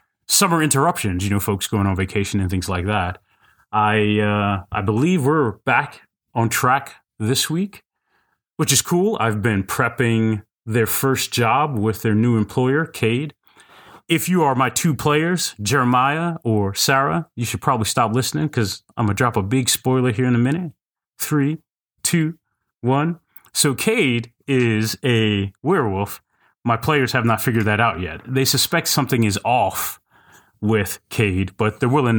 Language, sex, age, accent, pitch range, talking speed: English, male, 30-49, American, 110-150 Hz, 160 wpm